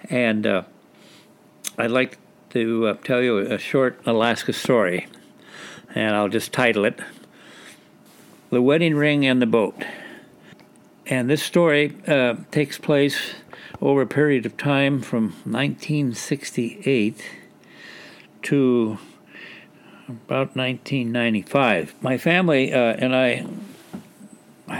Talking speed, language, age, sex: 105 wpm, English, 60-79, male